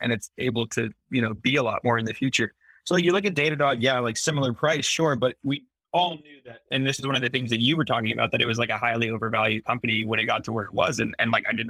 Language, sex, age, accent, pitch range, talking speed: English, male, 20-39, American, 110-135 Hz, 310 wpm